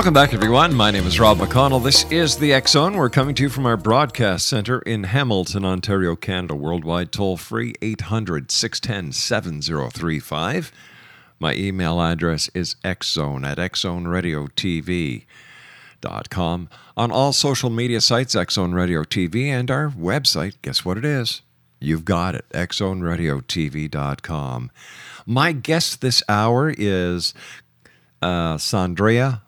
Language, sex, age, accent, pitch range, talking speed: English, male, 50-69, American, 90-125 Hz, 120 wpm